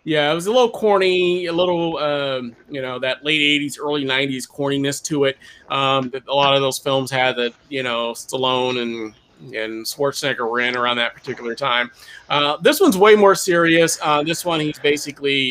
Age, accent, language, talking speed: 30-49, American, English, 195 wpm